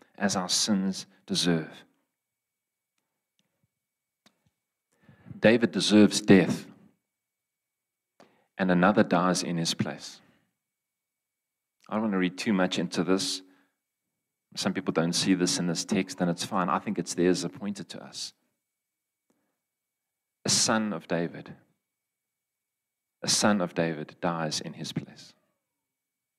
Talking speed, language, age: 120 wpm, English, 40-59